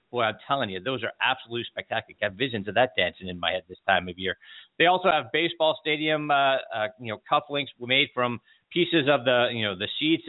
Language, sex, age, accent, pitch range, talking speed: English, male, 50-69, American, 115-150 Hz, 235 wpm